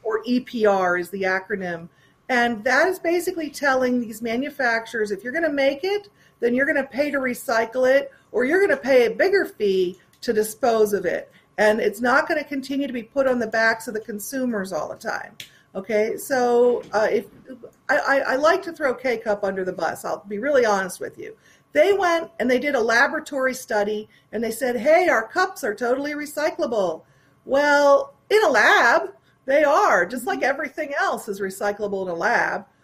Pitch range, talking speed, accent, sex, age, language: 225-300 Hz, 195 wpm, American, female, 50-69, English